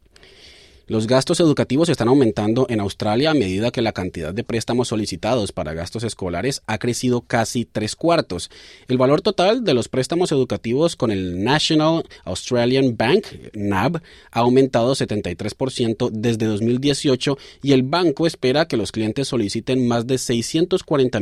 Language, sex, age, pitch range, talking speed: Spanish, male, 30-49, 110-140 Hz, 145 wpm